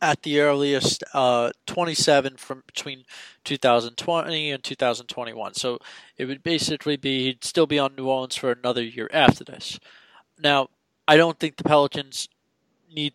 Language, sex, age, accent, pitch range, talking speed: English, male, 20-39, American, 125-150 Hz, 150 wpm